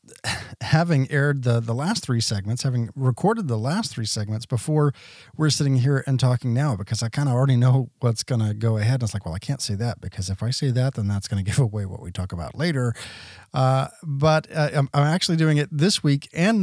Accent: American